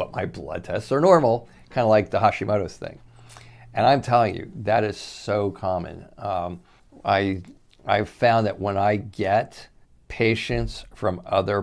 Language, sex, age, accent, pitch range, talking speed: English, male, 50-69, American, 85-105 Hz, 155 wpm